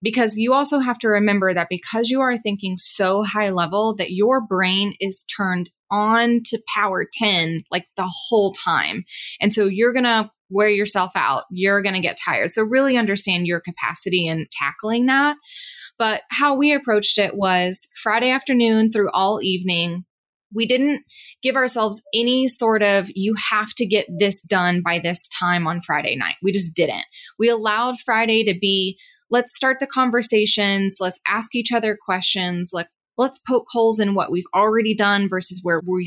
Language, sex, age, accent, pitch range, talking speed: English, female, 20-39, American, 190-245 Hz, 175 wpm